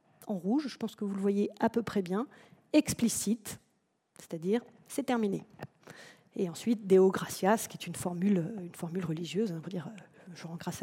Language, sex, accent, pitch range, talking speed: French, female, French, 200-280 Hz, 185 wpm